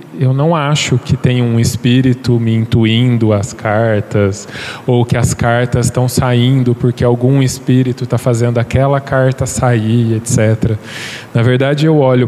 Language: Portuguese